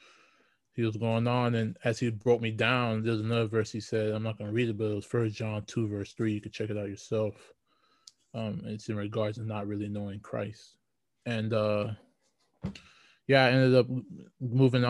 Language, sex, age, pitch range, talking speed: English, male, 20-39, 110-125 Hz, 205 wpm